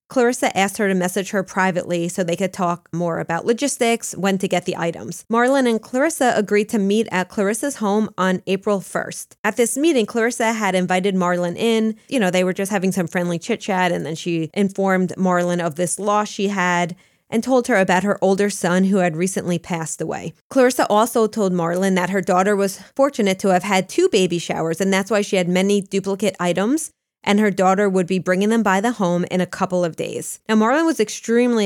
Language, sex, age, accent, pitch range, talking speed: English, female, 20-39, American, 180-225 Hz, 210 wpm